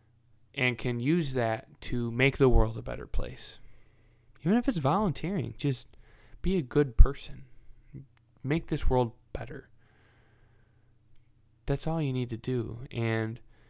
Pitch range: 110-130 Hz